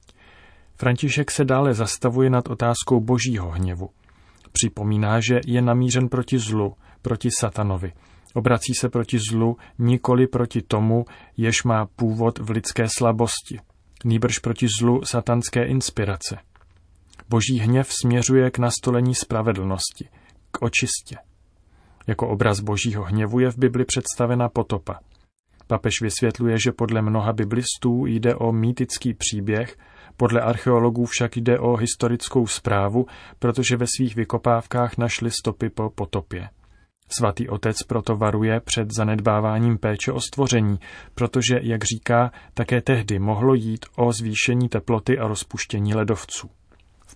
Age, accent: 30-49, native